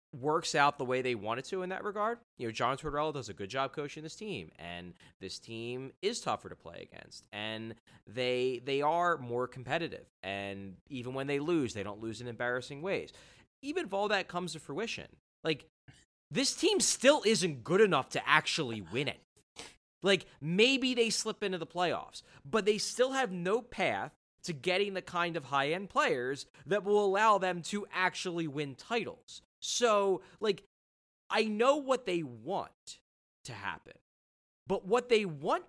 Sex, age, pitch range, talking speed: male, 30-49, 140-210 Hz, 180 wpm